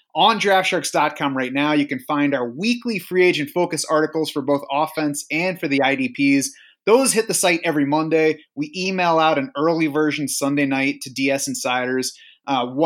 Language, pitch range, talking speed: English, 140-185 Hz, 175 wpm